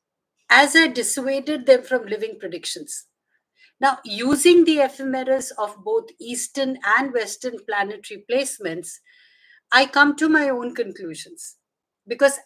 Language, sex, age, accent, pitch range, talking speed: English, female, 50-69, Indian, 230-295 Hz, 120 wpm